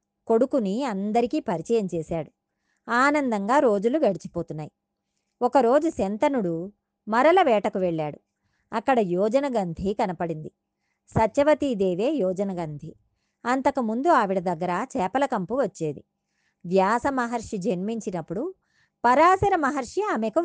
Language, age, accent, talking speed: Telugu, 20-39, native, 85 wpm